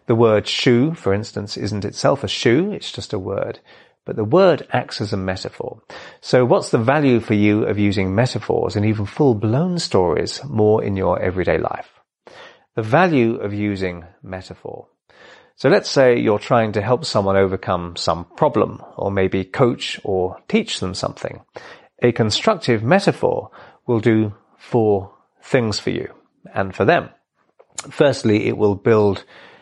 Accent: British